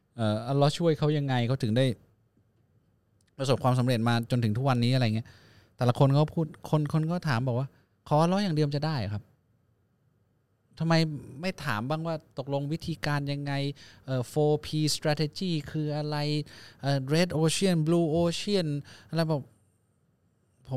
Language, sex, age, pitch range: Thai, male, 20-39, 115-160 Hz